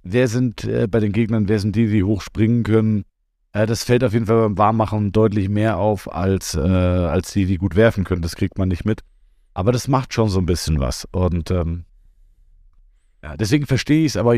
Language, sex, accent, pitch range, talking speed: German, male, German, 95-115 Hz, 215 wpm